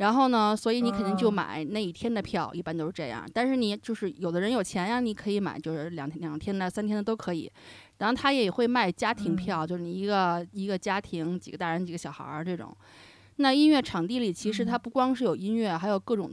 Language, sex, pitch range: Chinese, female, 170-215 Hz